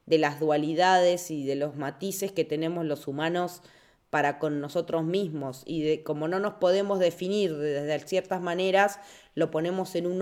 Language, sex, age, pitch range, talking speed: Spanish, female, 20-39, 150-180 Hz, 175 wpm